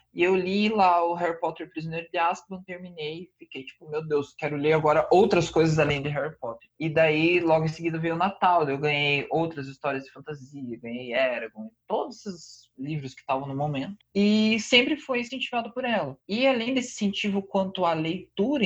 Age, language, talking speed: 20-39, Portuguese, 195 wpm